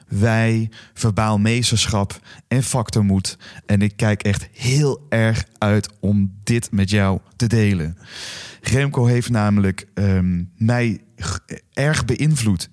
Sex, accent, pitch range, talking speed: male, Dutch, 105-135 Hz, 120 wpm